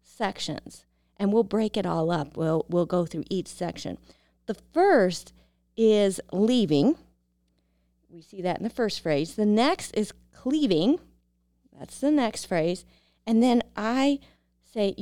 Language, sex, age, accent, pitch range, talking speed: English, female, 30-49, American, 160-230 Hz, 145 wpm